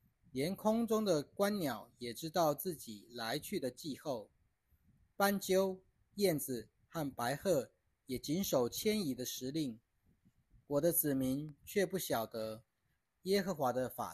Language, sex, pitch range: Chinese, male, 120-180 Hz